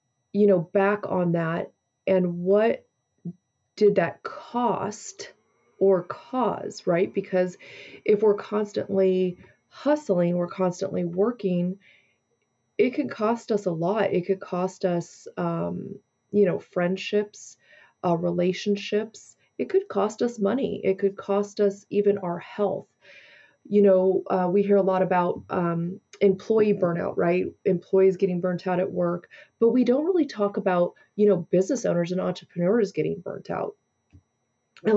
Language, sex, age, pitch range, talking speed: English, female, 30-49, 180-210 Hz, 140 wpm